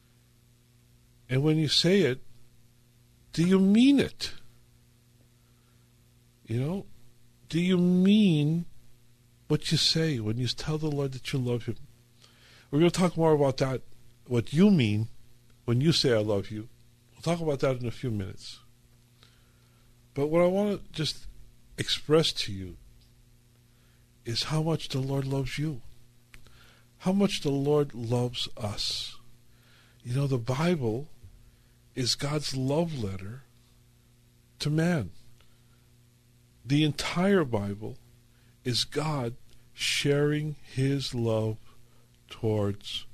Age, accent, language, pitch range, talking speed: 50-69, American, English, 120-140 Hz, 125 wpm